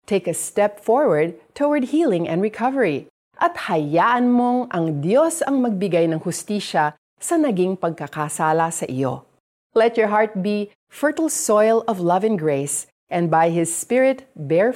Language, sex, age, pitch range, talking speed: Filipino, female, 40-59, 155-225 Hz, 145 wpm